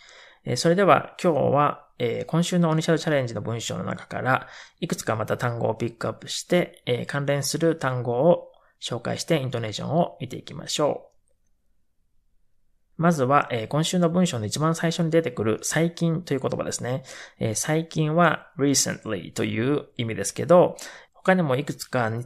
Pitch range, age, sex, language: 125-170 Hz, 20-39, male, Japanese